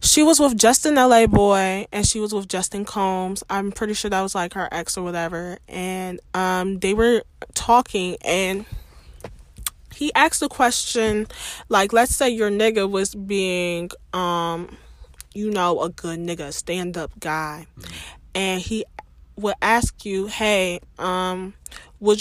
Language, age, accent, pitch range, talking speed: English, 10-29, American, 180-225 Hz, 150 wpm